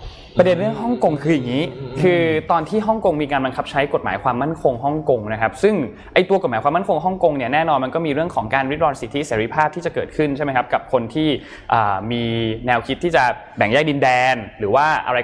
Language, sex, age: Thai, male, 20-39